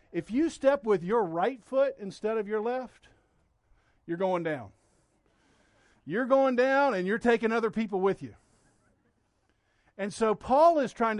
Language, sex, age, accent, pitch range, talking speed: English, male, 50-69, American, 170-235 Hz, 155 wpm